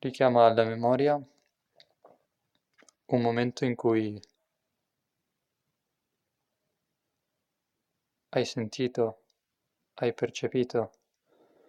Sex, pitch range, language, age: male, 110-125 Hz, Italian, 20-39